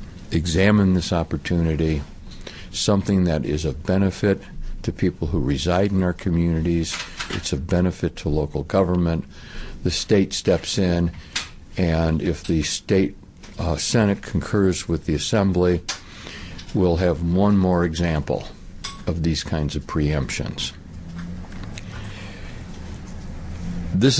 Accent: American